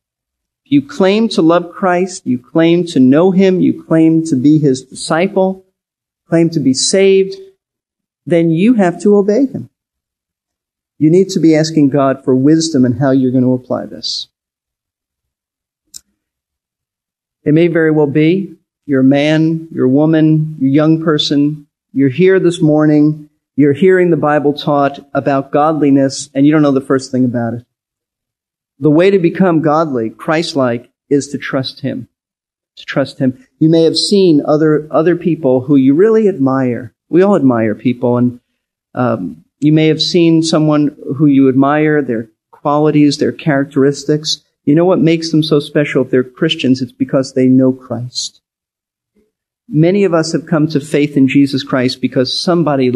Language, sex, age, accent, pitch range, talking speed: English, male, 40-59, American, 130-165 Hz, 165 wpm